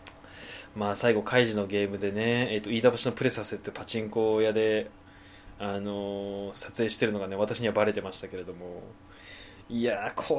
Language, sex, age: Japanese, male, 20-39